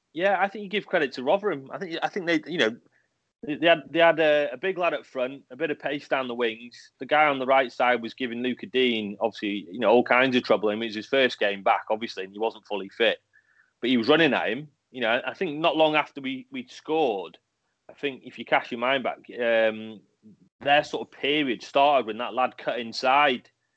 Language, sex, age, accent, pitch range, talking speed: English, male, 30-49, British, 115-150 Hz, 245 wpm